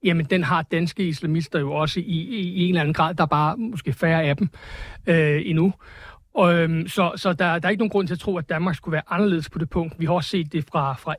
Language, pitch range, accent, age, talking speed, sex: Danish, 160-190 Hz, native, 60-79, 275 wpm, male